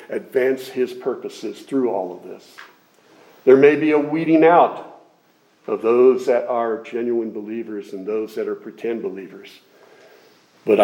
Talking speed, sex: 145 wpm, male